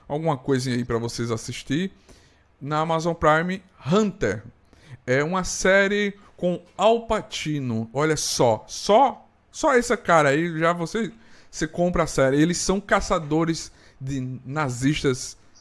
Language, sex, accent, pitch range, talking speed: Portuguese, male, Brazilian, 130-180 Hz, 125 wpm